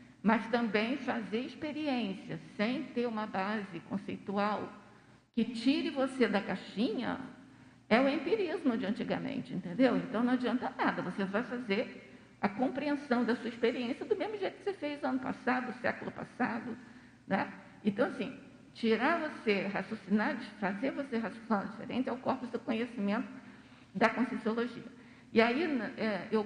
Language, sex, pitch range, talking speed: Portuguese, female, 215-265 Hz, 140 wpm